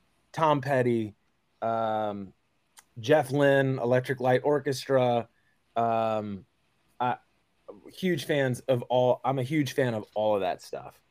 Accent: American